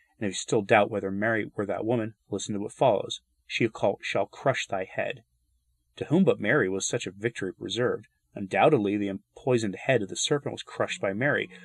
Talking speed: 200 wpm